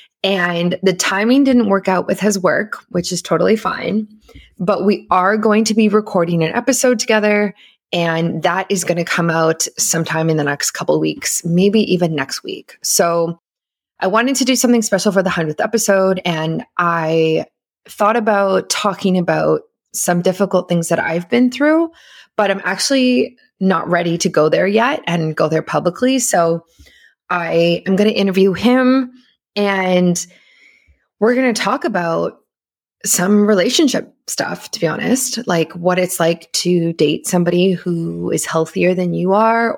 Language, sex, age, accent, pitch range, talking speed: English, female, 20-39, American, 170-215 Hz, 165 wpm